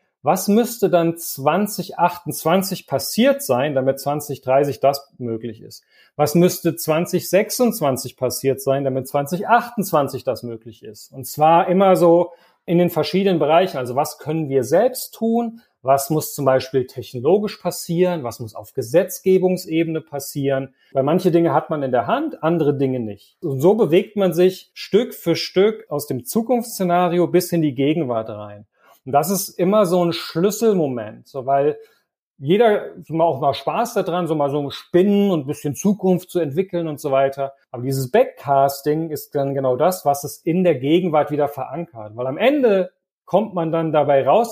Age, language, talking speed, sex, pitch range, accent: 40-59, German, 165 wpm, male, 140-190 Hz, German